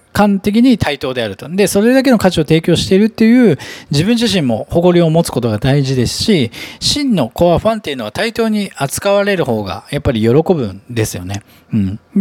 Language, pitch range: Japanese, 130-205 Hz